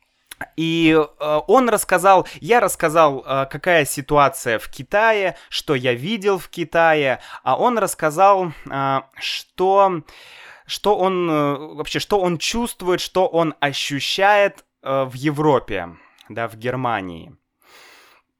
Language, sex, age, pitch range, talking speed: Russian, male, 20-39, 145-200 Hz, 105 wpm